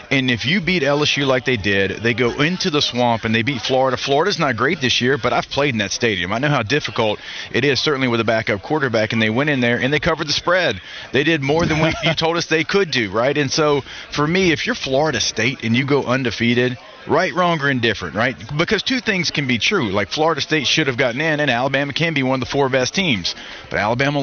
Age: 40-59